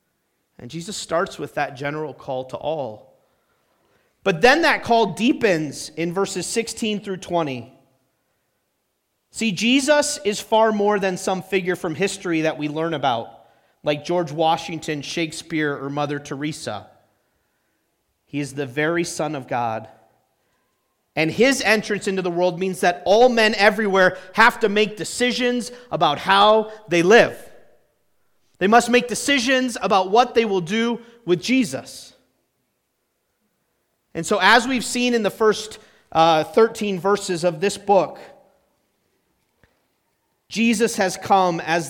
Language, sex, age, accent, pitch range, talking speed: English, male, 30-49, American, 155-215 Hz, 135 wpm